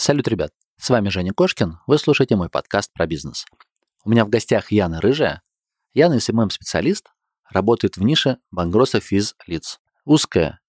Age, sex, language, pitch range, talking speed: 30-49, male, Russian, 95-120 Hz, 145 wpm